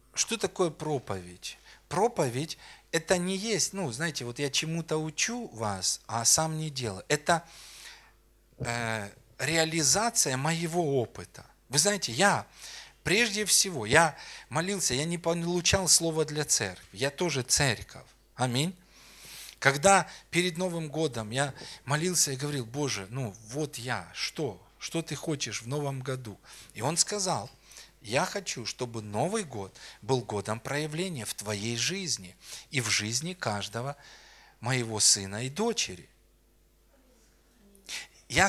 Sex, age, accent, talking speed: male, 40-59, native, 130 wpm